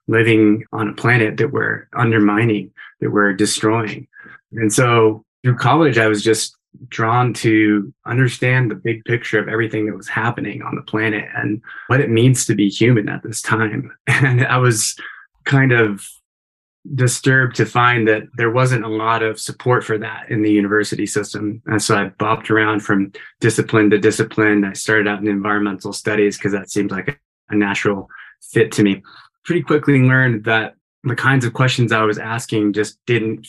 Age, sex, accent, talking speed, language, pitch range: 20-39, male, American, 175 wpm, English, 105-120 Hz